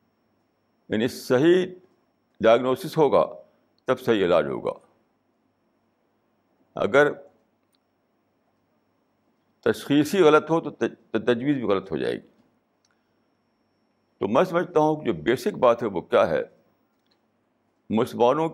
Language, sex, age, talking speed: Urdu, male, 60-79, 105 wpm